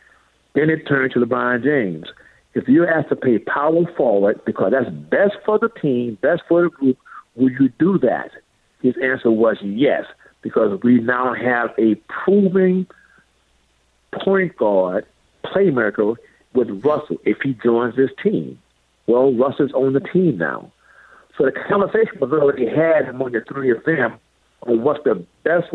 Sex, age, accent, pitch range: male, 60-79, American, 115-160 Hz